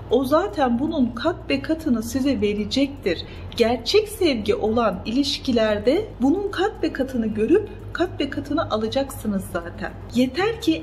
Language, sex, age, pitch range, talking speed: Turkish, female, 40-59, 200-270 Hz, 135 wpm